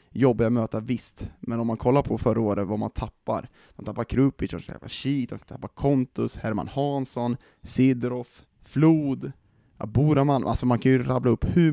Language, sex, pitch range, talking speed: Swedish, male, 105-130 Hz, 160 wpm